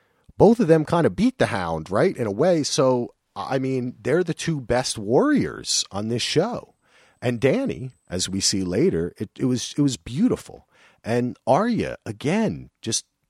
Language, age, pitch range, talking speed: English, 40-59, 85-120 Hz, 165 wpm